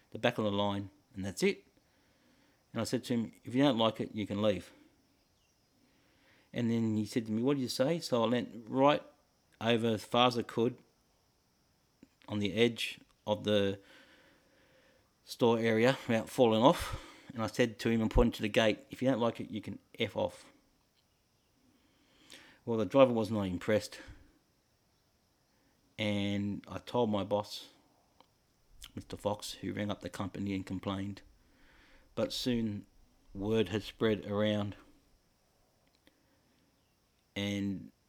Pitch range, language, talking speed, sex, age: 105-120 Hz, English, 150 wpm, male, 50-69